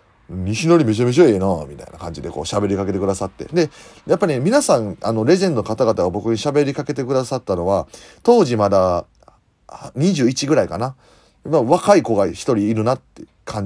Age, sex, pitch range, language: 30-49, male, 100-170 Hz, Japanese